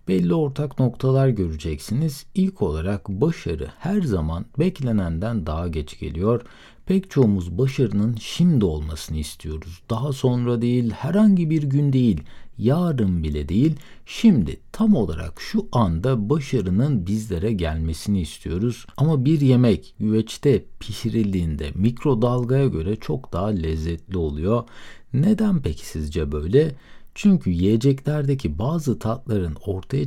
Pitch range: 85-135 Hz